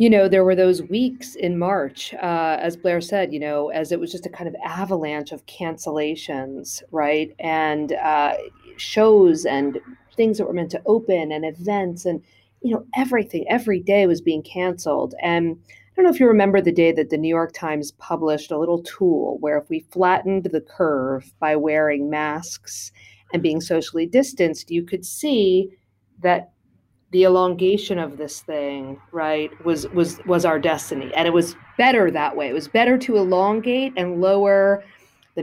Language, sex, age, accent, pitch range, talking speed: English, female, 40-59, American, 155-210 Hz, 180 wpm